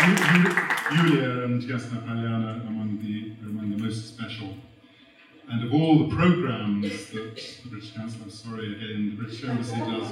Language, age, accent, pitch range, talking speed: Russian, 50-69, British, 110-125 Hz, 160 wpm